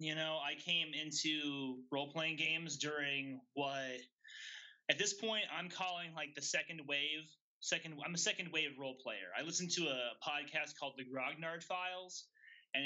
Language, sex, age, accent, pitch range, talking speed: English, male, 30-49, American, 130-165 Hz, 160 wpm